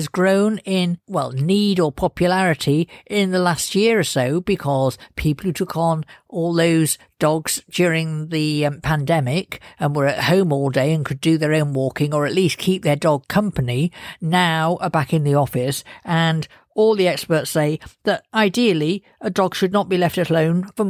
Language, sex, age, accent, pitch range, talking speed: English, female, 50-69, British, 155-200 Hz, 185 wpm